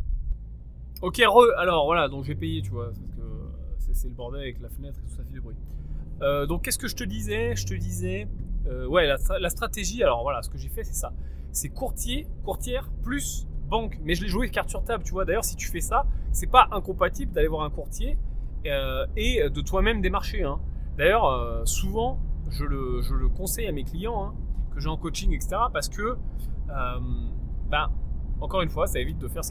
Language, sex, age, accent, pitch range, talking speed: French, male, 20-39, French, 65-100 Hz, 205 wpm